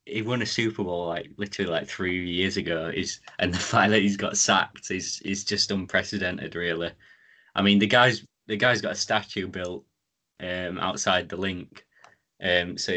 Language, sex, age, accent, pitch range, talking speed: English, male, 20-39, British, 90-110 Hz, 185 wpm